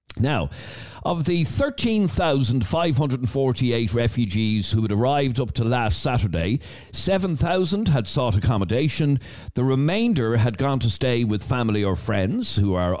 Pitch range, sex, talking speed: 105-145 Hz, male, 130 wpm